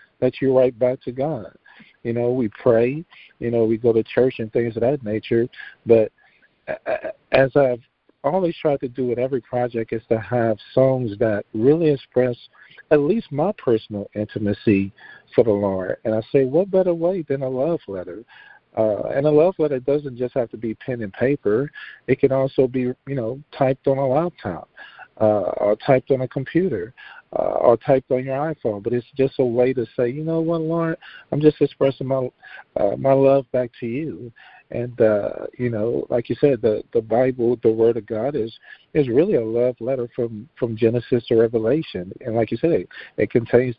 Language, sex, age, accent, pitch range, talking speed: English, male, 50-69, American, 115-140 Hz, 195 wpm